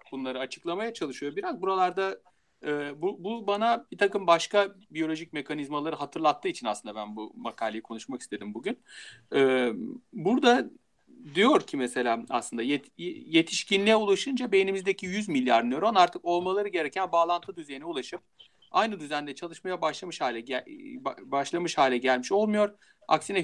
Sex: male